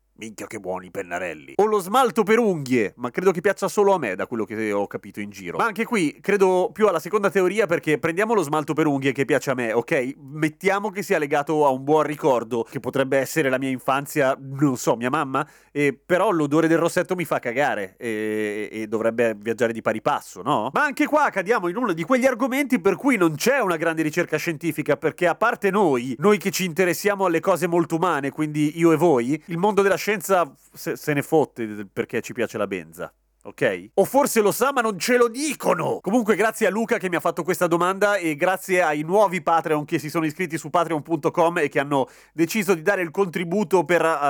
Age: 30-49